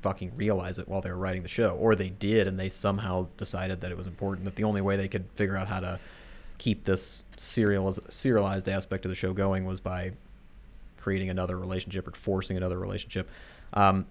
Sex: male